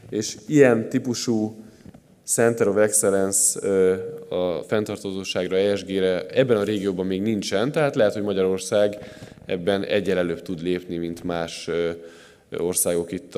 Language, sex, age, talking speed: Hungarian, male, 10-29, 115 wpm